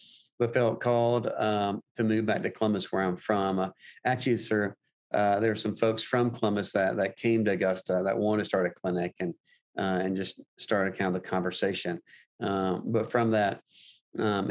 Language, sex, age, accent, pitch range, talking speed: English, male, 40-59, American, 100-115 Hz, 195 wpm